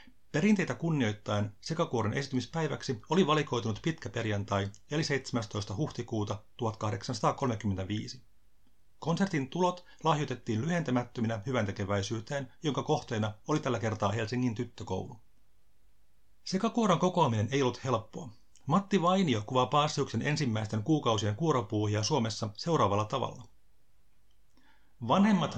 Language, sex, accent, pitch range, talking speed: Finnish, male, native, 105-145 Hz, 95 wpm